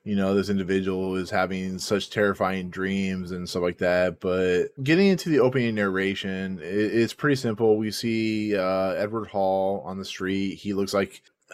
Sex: male